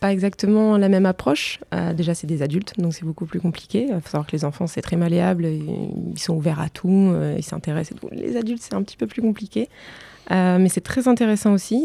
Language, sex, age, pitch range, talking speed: French, female, 20-39, 170-210 Hz, 235 wpm